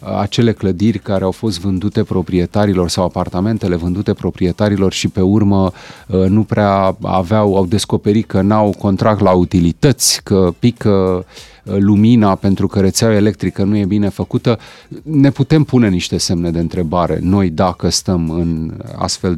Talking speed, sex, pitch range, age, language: 145 wpm, male, 95-120 Hz, 30-49, Romanian